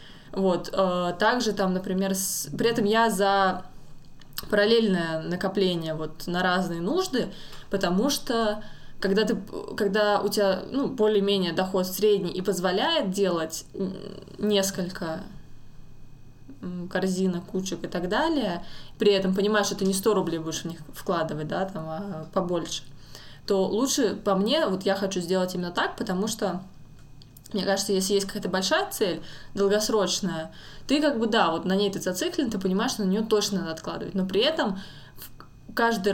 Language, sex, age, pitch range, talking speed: Russian, female, 20-39, 175-210 Hz, 145 wpm